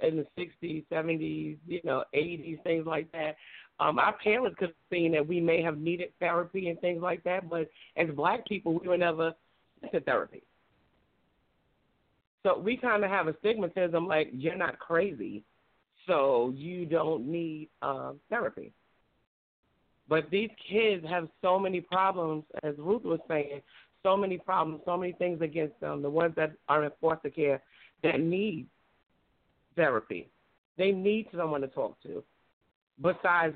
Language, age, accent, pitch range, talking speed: English, 40-59, American, 155-185 Hz, 155 wpm